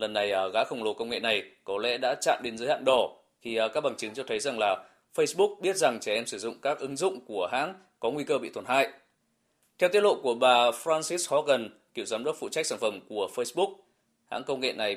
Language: Vietnamese